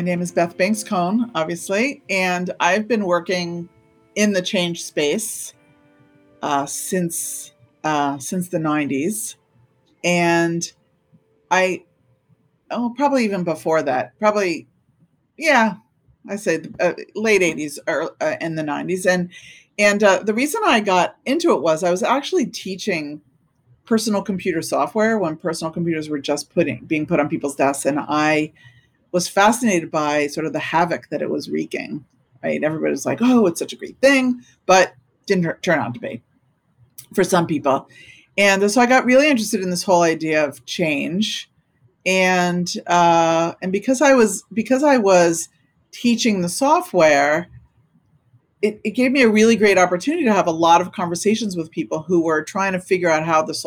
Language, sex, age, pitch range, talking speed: English, female, 50-69, 155-210 Hz, 165 wpm